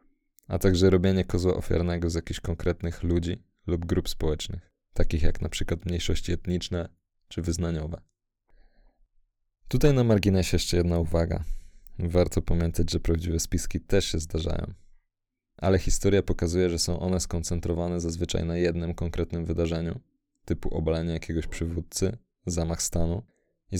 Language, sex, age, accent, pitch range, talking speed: Polish, male, 20-39, native, 85-95 Hz, 130 wpm